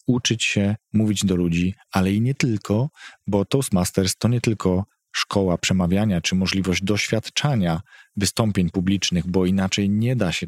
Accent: native